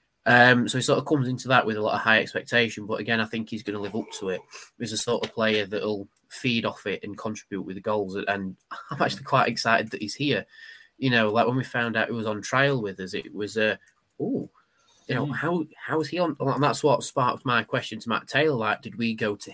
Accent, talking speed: British, 270 wpm